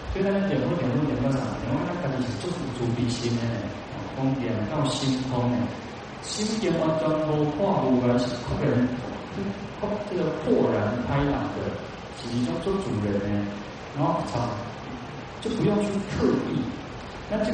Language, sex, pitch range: Chinese, male, 115-140 Hz